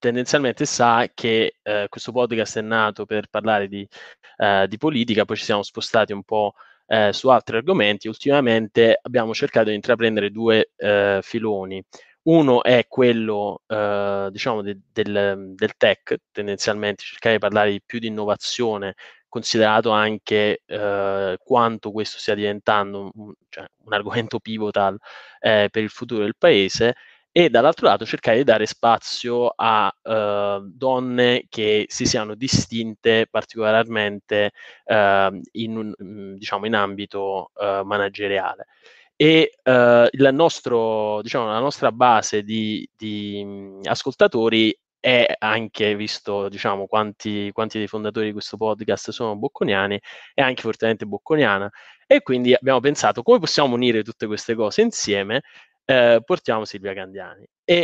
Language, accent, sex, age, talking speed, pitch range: Italian, native, male, 20-39, 135 wpm, 105-120 Hz